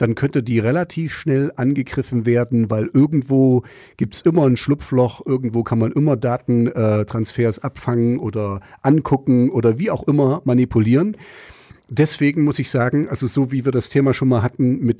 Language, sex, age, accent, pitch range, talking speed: German, male, 40-59, German, 120-140 Hz, 165 wpm